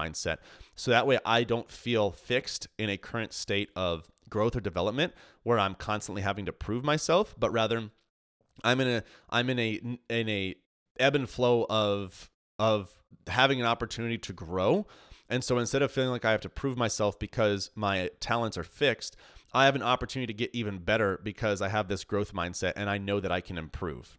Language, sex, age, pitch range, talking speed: English, male, 30-49, 95-120 Hz, 200 wpm